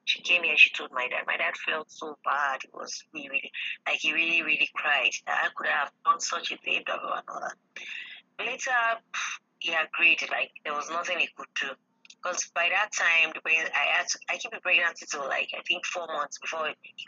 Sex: female